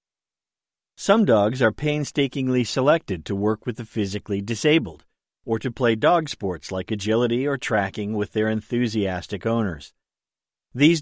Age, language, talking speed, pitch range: 50-69, English, 135 wpm, 100-140 Hz